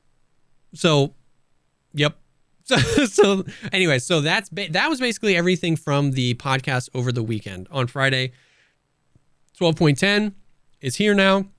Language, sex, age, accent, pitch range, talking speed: English, male, 20-39, American, 120-165 Hz, 125 wpm